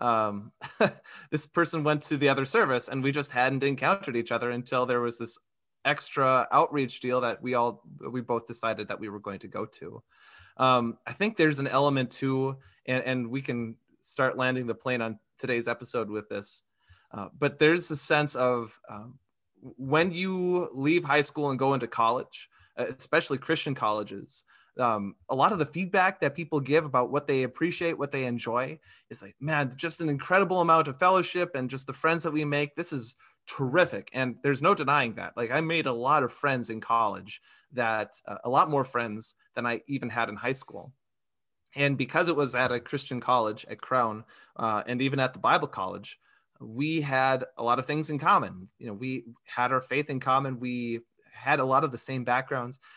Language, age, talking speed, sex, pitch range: English, 20-39, 200 wpm, male, 120-150 Hz